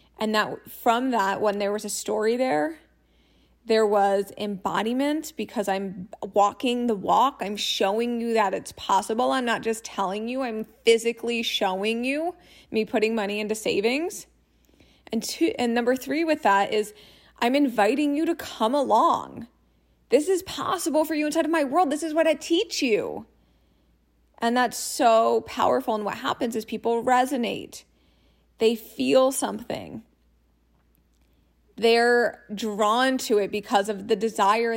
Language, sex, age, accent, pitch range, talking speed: English, female, 20-39, American, 200-250 Hz, 150 wpm